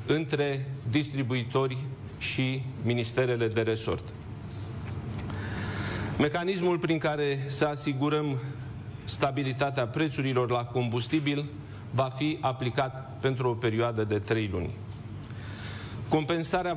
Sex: male